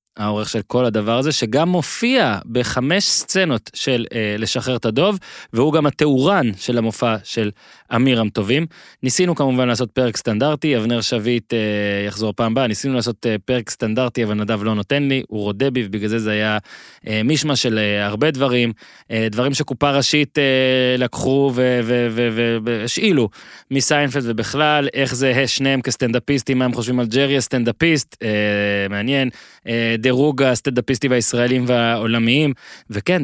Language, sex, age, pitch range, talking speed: Hebrew, male, 20-39, 110-135 Hz, 130 wpm